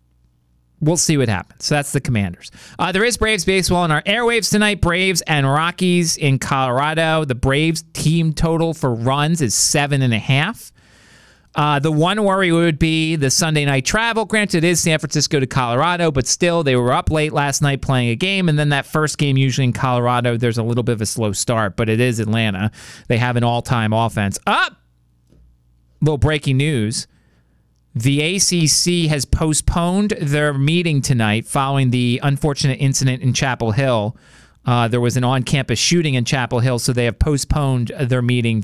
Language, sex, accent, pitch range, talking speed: English, male, American, 115-160 Hz, 185 wpm